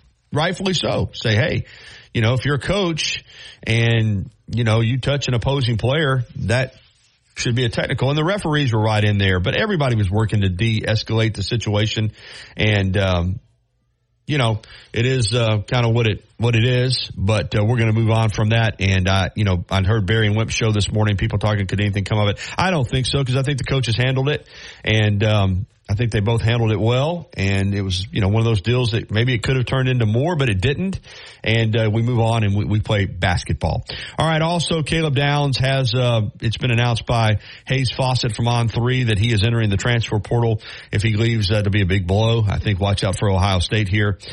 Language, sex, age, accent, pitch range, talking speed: English, male, 40-59, American, 105-125 Hz, 230 wpm